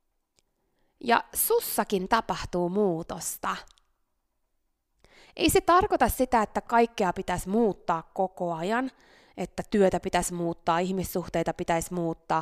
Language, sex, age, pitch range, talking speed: Finnish, female, 20-39, 180-240 Hz, 100 wpm